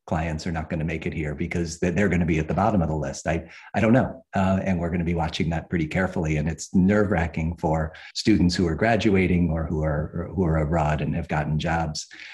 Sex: male